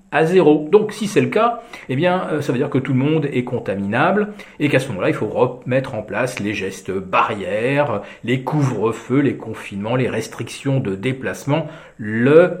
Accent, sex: French, male